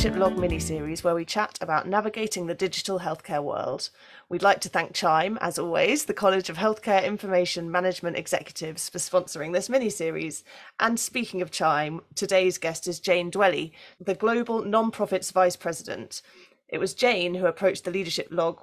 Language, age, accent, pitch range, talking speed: English, 30-49, British, 175-200 Hz, 165 wpm